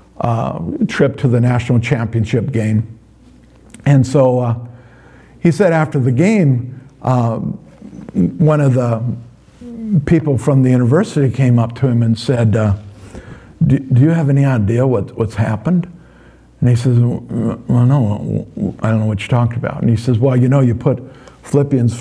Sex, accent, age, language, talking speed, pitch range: male, American, 50-69, English, 165 wpm, 115-140 Hz